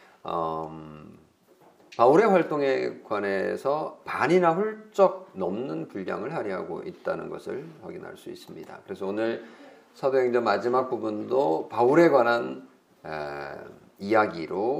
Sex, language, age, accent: male, Korean, 50-69, native